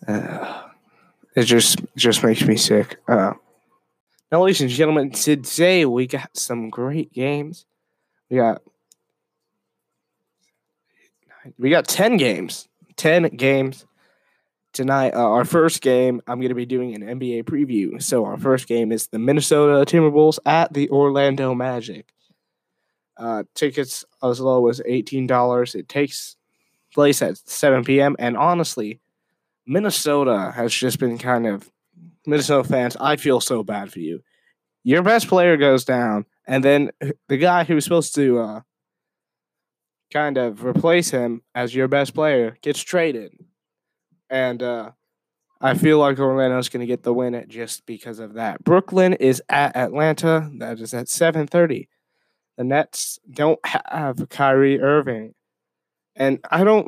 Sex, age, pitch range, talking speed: male, 20-39, 125-155 Hz, 140 wpm